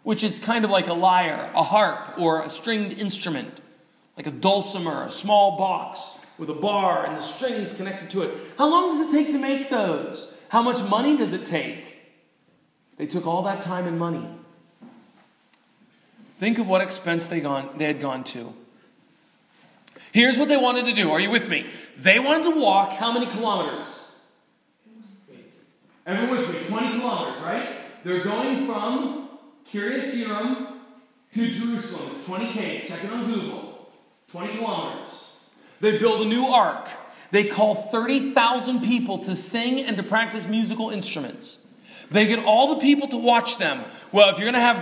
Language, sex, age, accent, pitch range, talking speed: English, male, 40-59, American, 190-240 Hz, 165 wpm